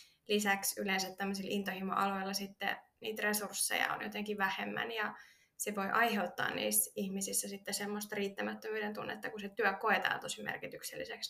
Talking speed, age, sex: 125 wpm, 20-39, female